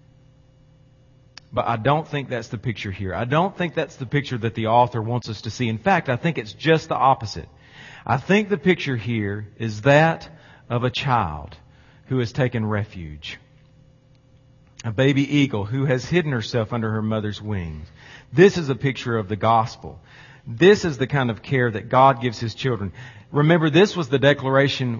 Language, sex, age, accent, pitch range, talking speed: English, male, 40-59, American, 125-160 Hz, 185 wpm